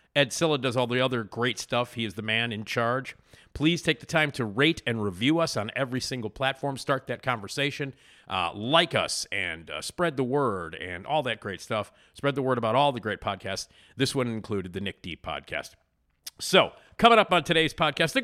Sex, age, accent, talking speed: male, 50-69, American, 215 wpm